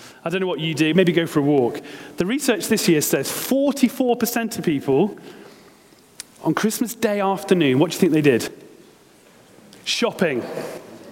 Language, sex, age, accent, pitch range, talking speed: English, male, 30-49, British, 155-215 Hz, 160 wpm